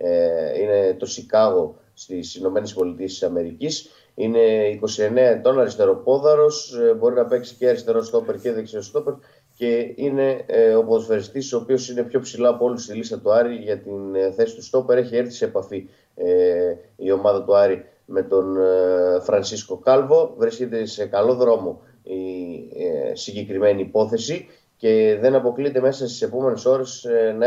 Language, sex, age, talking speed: Greek, male, 20-39, 150 wpm